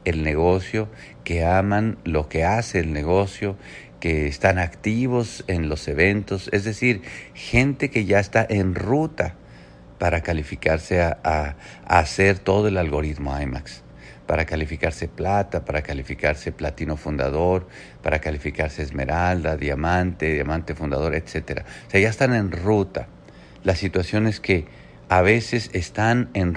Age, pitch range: 50-69, 80-110 Hz